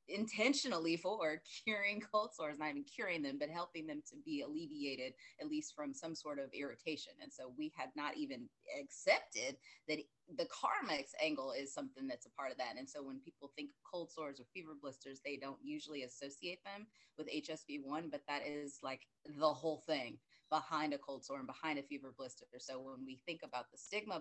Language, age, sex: English, 30-49, female